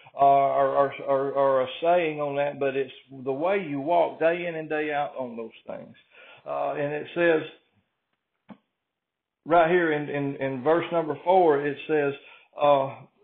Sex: male